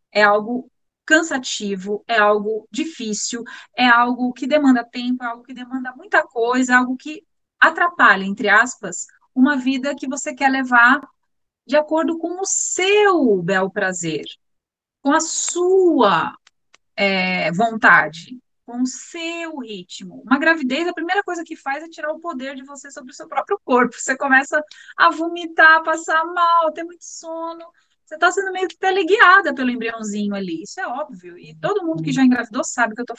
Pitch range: 240-320 Hz